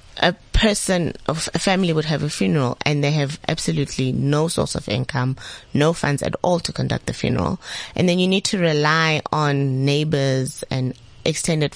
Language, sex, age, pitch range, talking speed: English, female, 20-39, 130-180 Hz, 180 wpm